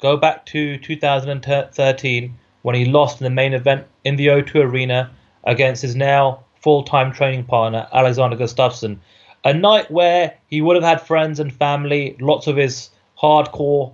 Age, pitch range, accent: 30-49, 120-145 Hz, British